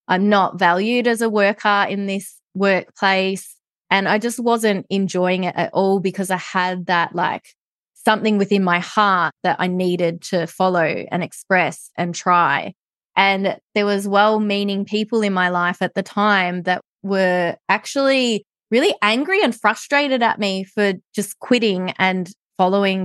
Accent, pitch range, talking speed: Australian, 180-205 Hz, 155 wpm